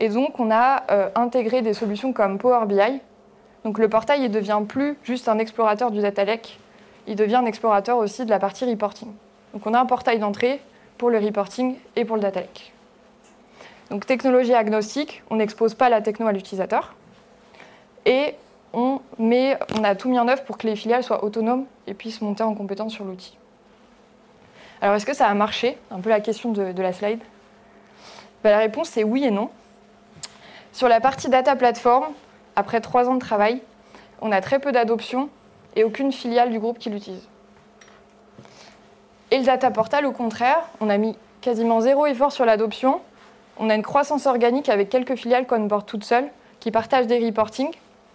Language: French